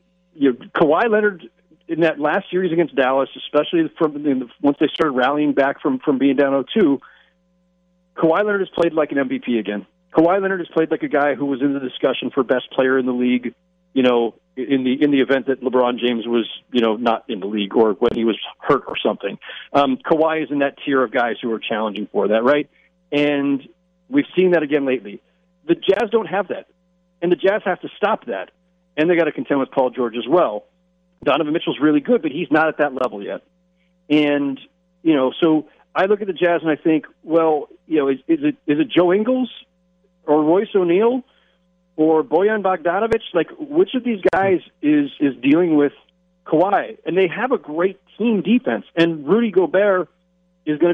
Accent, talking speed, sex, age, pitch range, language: American, 205 wpm, male, 40-59, 140-180 Hz, English